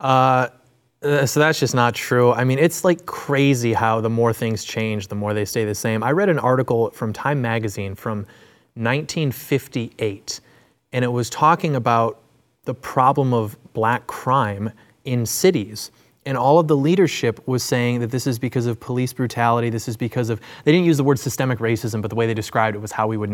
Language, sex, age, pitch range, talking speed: English, male, 20-39, 115-135 Hz, 200 wpm